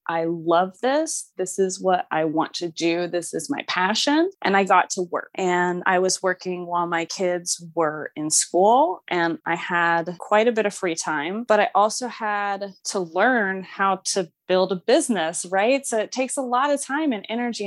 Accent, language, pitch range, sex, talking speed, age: American, English, 175-215 Hz, female, 200 wpm, 20-39